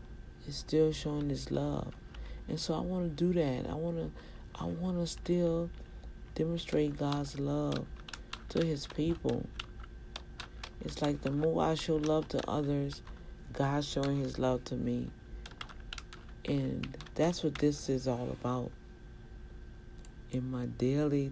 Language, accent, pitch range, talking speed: English, American, 125-150 Hz, 130 wpm